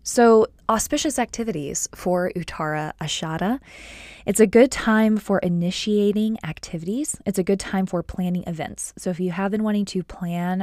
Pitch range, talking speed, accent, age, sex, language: 170-210 Hz, 160 wpm, American, 20-39, female, English